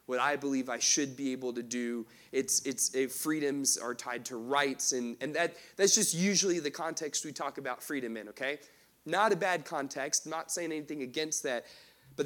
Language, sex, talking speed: English, male, 200 wpm